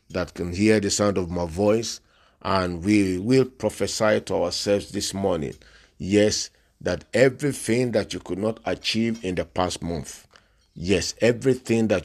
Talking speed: 155 wpm